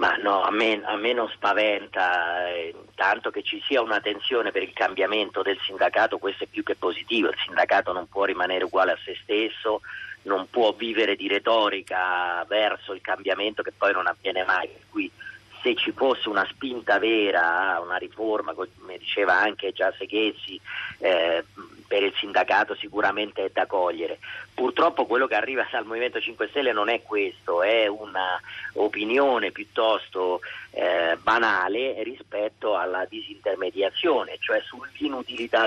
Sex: male